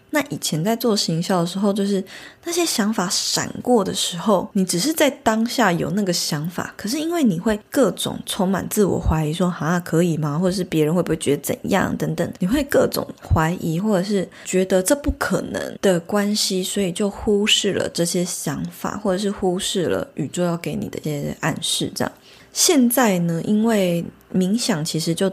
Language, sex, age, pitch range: Chinese, female, 20-39, 170-210 Hz